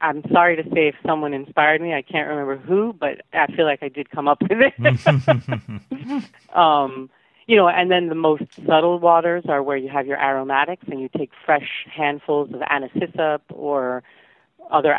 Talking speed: 185 wpm